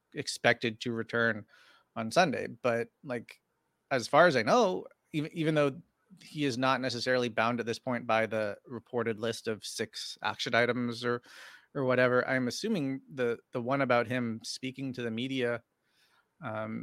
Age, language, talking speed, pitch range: 30-49, English, 165 wpm, 115-130 Hz